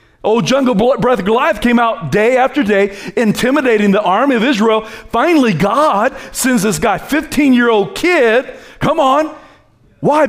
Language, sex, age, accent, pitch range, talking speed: English, male, 40-59, American, 195-270 Hz, 155 wpm